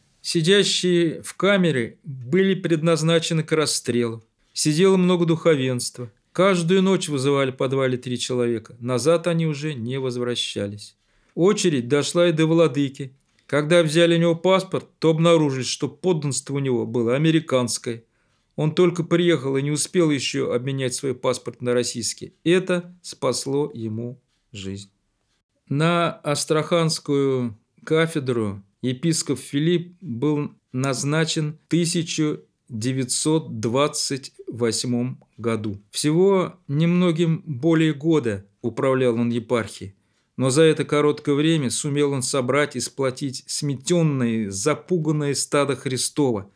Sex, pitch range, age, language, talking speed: male, 125-165 Hz, 40-59, Russian, 110 wpm